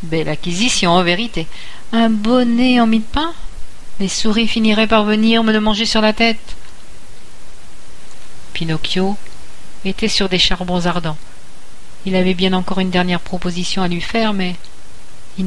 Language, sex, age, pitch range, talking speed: French, female, 50-69, 170-220 Hz, 155 wpm